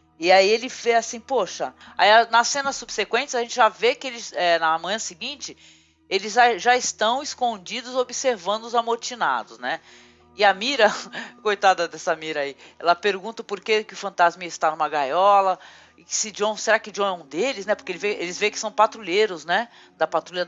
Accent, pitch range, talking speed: Brazilian, 170-230 Hz, 175 wpm